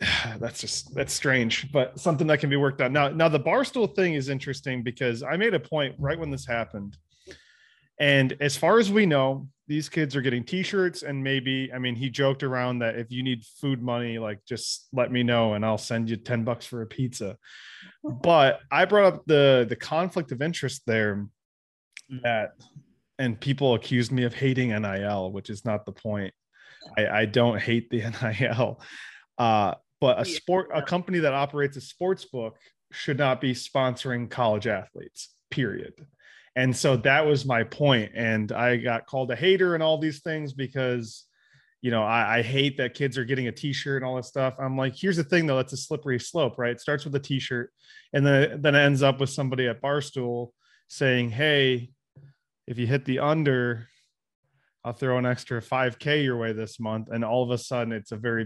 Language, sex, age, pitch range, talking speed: English, male, 20-39, 115-140 Hz, 200 wpm